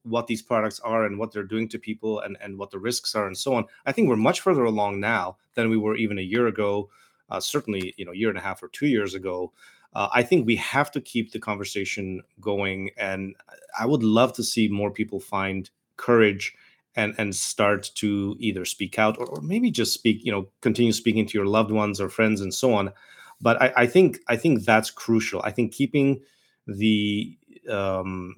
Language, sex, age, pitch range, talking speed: English, male, 30-49, 100-120 Hz, 220 wpm